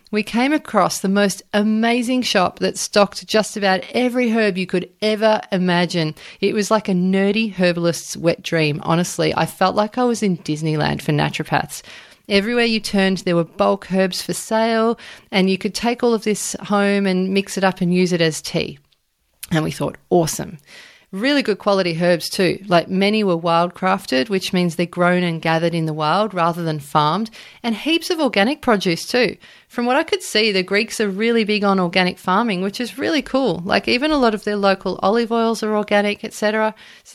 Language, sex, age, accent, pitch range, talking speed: English, female, 30-49, Australian, 175-225 Hz, 200 wpm